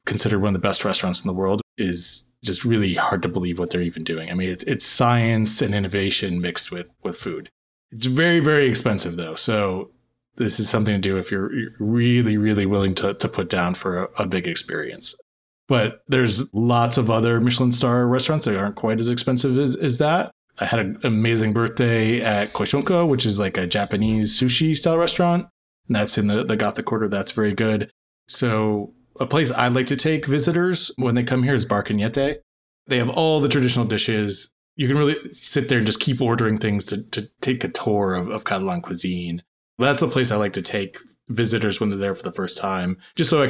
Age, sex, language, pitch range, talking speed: 20-39, male, English, 105-130 Hz, 215 wpm